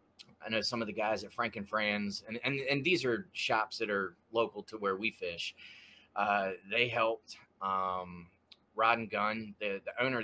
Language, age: English, 20-39